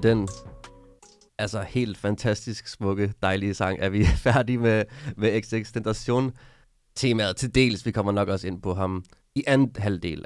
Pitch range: 95-120 Hz